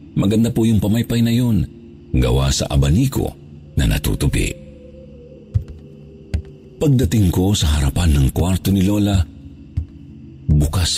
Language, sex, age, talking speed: Filipino, male, 50-69, 110 wpm